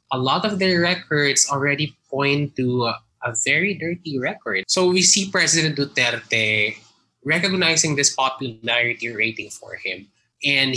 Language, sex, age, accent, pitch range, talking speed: English, male, 20-39, Filipino, 120-165 Hz, 140 wpm